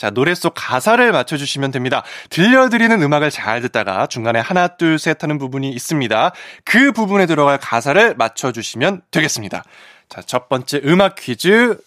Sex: male